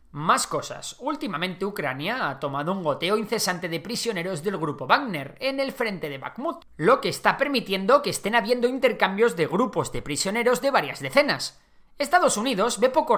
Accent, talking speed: Spanish, 175 wpm